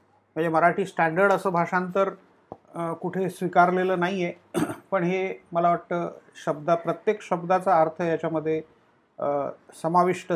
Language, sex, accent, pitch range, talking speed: Marathi, male, native, 160-200 Hz, 110 wpm